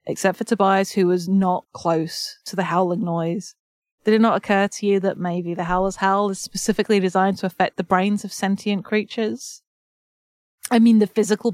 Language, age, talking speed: English, 30-49, 185 wpm